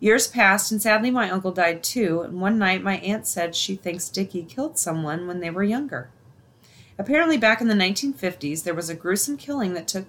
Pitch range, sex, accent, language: 165-215 Hz, female, American, English